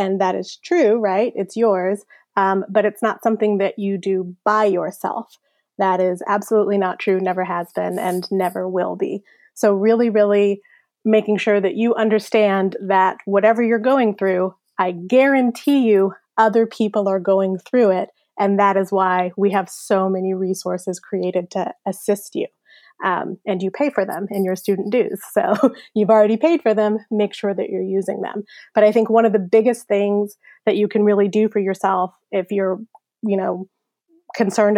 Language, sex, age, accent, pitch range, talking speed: English, female, 20-39, American, 190-215 Hz, 185 wpm